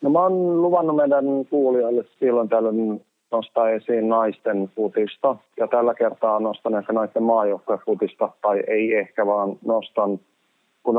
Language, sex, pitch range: Finnish, male, 100-115 Hz